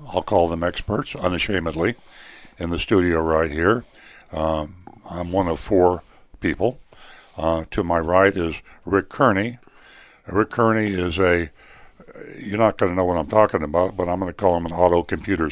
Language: English